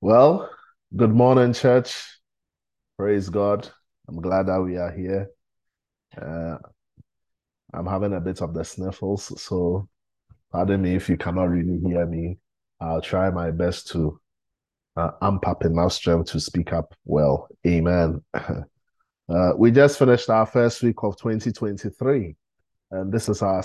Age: 20-39